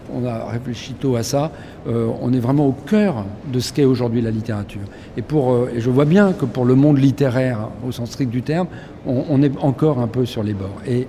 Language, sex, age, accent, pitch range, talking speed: French, male, 50-69, French, 120-160 Hz, 250 wpm